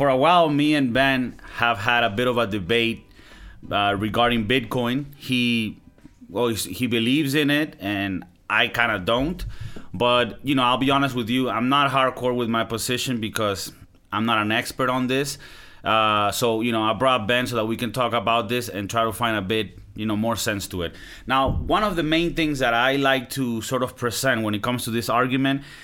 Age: 30-49